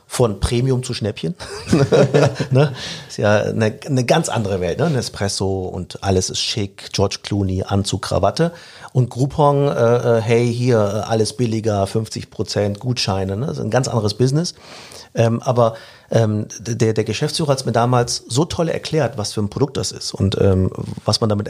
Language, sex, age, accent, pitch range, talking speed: German, male, 40-59, German, 105-130 Hz, 160 wpm